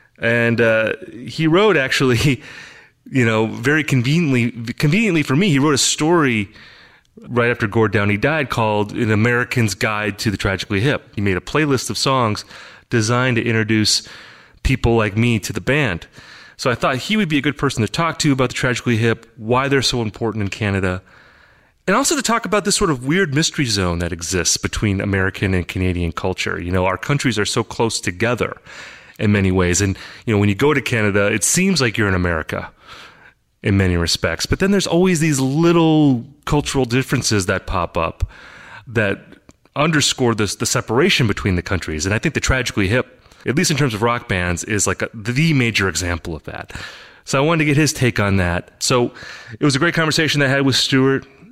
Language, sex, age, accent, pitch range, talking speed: English, male, 30-49, American, 105-145 Hz, 200 wpm